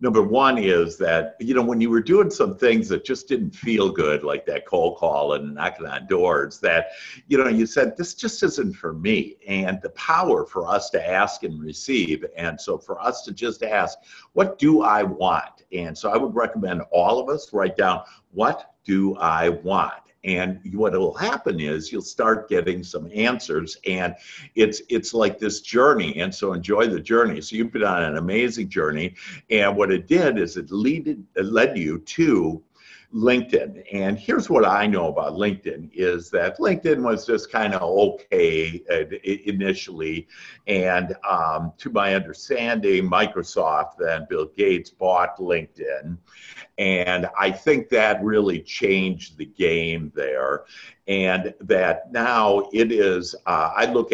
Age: 60-79